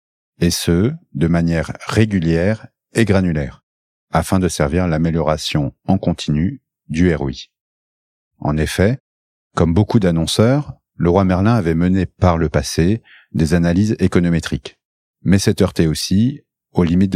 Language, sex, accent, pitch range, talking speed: French, male, French, 80-100 Hz, 135 wpm